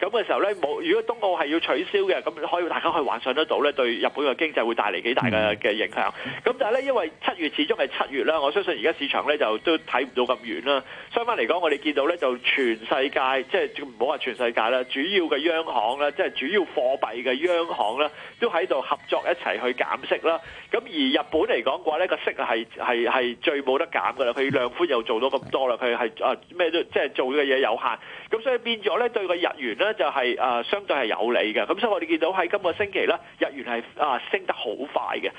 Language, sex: Chinese, male